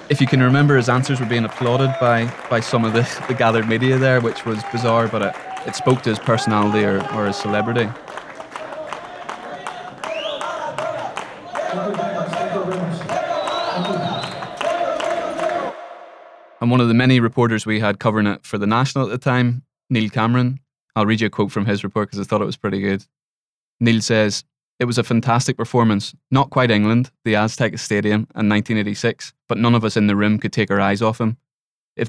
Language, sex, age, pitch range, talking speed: English, male, 20-39, 105-130 Hz, 175 wpm